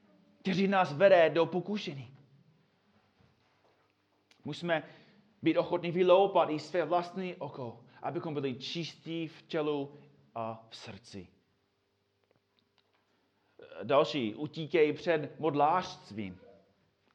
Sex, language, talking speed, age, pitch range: male, Czech, 90 wpm, 30-49, 120-160 Hz